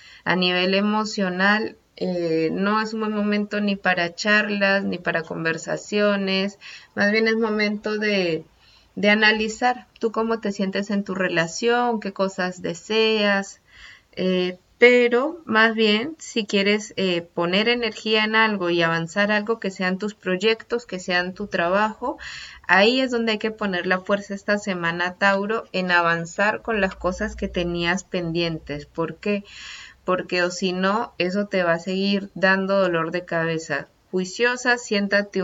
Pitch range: 180-215 Hz